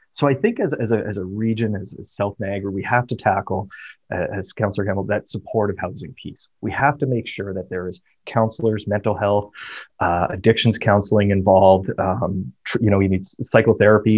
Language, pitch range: English, 95-115 Hz